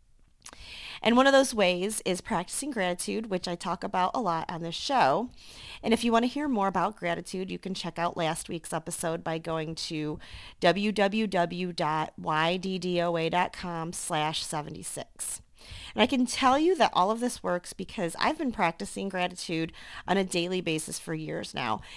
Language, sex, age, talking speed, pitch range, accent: English, female, 40-59, 165 wpm, 165-210 Hz, American